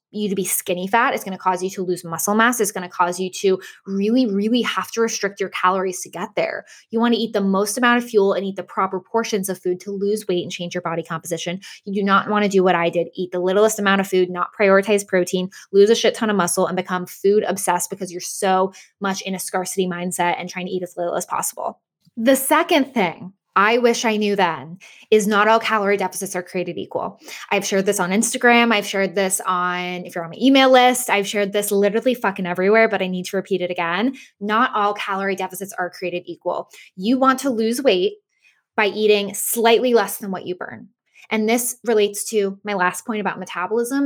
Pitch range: 185-220 Hz